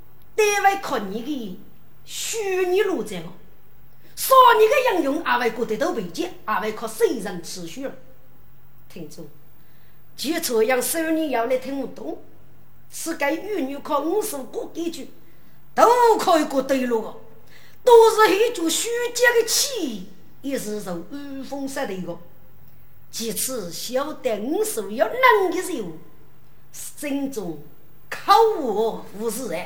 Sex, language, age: female, Chinese, 50-69